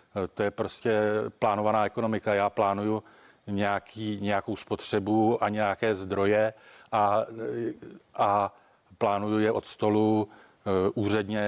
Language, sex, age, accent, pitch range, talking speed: Czech, male, 40-59, native, 100-110 Hz, 110 wpm